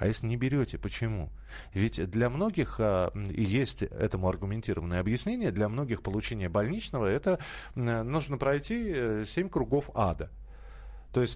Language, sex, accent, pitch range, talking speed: Russian, male, native, 105-130 Hz, 130 wpm